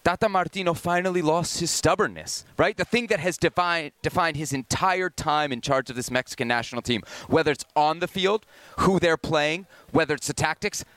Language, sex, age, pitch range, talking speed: English, male, 30-49, 145-195 Hz, 185 wpm